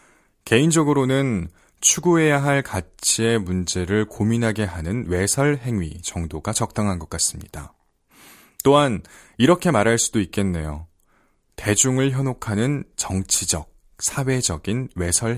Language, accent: Korean, native